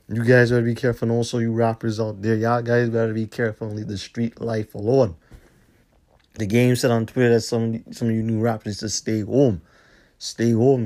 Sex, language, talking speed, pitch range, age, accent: male, English, 215 wpm, 105-125 Hz, 30-49, American